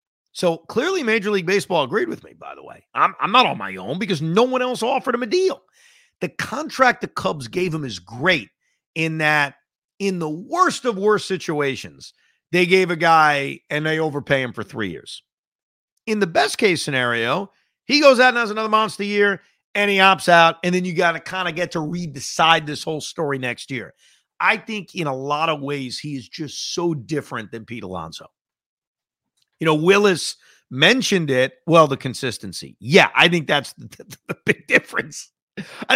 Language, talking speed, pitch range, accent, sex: English, 195 wpm, 130-185 Hz, American, male